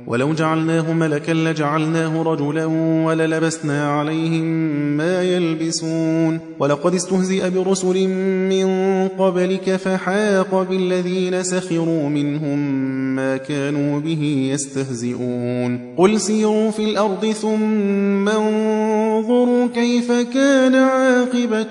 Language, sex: Persian, male